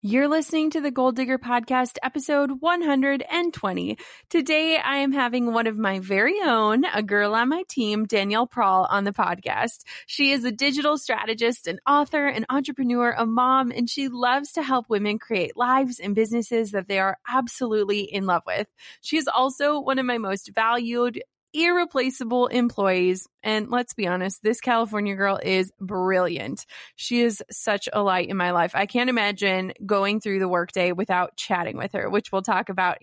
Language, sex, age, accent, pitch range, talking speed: English, female, 20-39, American, 195-255 Hz, 180 wpm